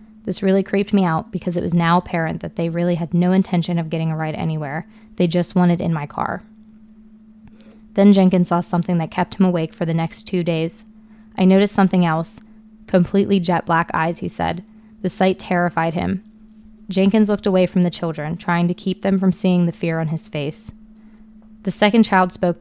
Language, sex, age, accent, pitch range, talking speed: English, female, 20-39, American, 175-215 Hz, 200 wpm